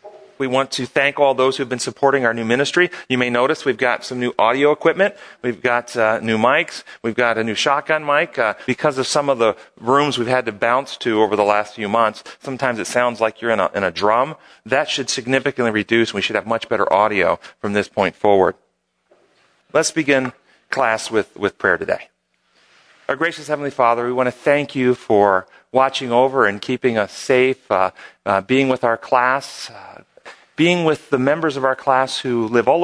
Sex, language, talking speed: male, English, 210 wpm